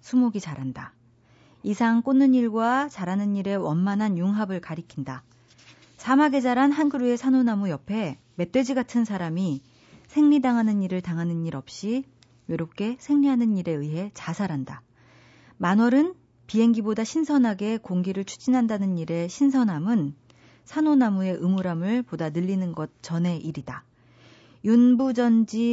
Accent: native